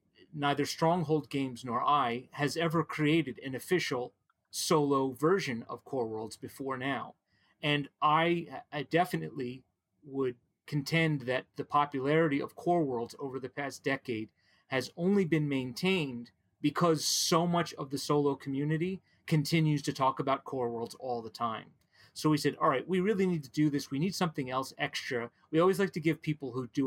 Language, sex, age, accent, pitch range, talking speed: English, male, 30-49, American, 125-155 Hz, 170 wpm